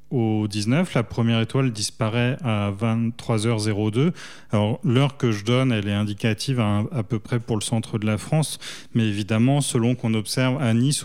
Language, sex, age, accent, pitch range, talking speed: French, male, 20-39, French, 110-135 Hz, 185 wpm